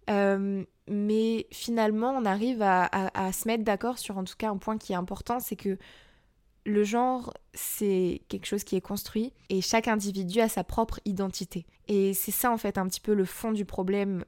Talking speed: 200 wpm